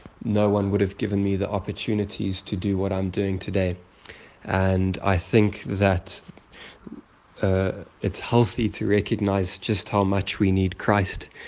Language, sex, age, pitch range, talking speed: English, male, 20-39, 95-100 Hz, 150 wpm